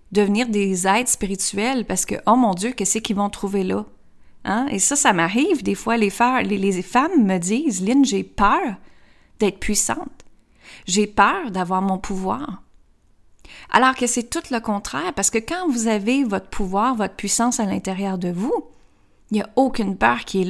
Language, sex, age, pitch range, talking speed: French, female, 30-49, 190-235 Hz, 190 wpm